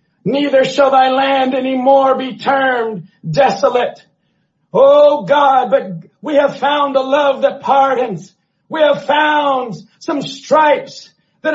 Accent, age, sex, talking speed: American, 40-59, male, 130 wpm